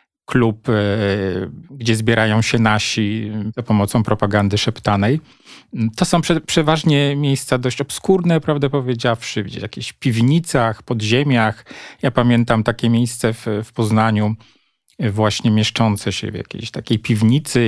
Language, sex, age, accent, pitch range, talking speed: Polish, male, 40-59, native, 110-140 Hz, 120 wpm